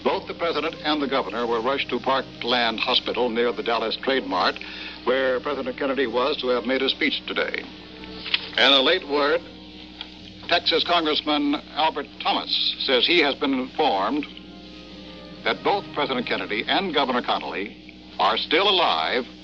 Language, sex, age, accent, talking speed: English, male, 60-79, American, 150 wpm